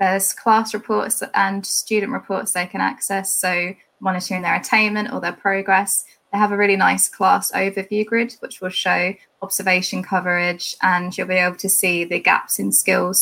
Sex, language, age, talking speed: female, English, 10-29, 175 wpm